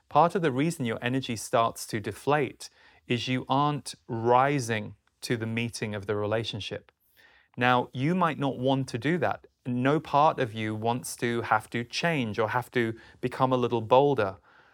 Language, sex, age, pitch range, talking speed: English, male, 30-49, 115-135 Hz, 175 wpm